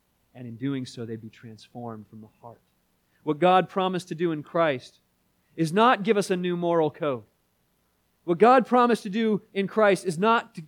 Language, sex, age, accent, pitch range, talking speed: English, male, 30-49, American, 115-180 Hz, 195 wpm